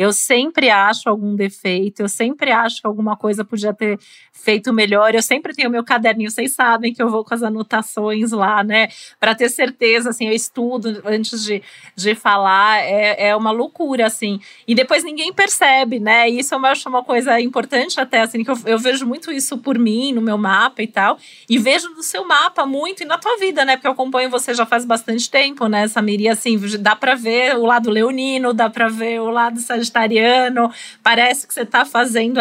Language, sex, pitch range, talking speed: Portuguese, female, 215-255 Hz, 205 wpm